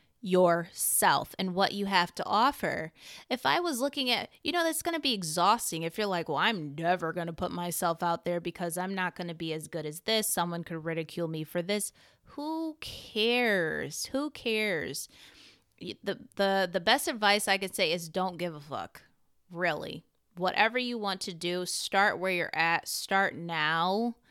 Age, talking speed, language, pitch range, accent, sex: 20-39, 190 wpm, English, 175-230 Hz, American, female